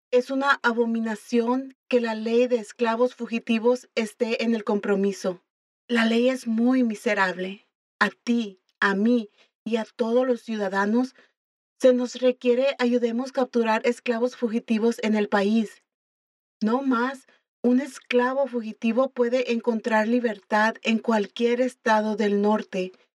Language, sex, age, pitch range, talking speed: English, female, 40-59, 215-250 Hz, 130 wpm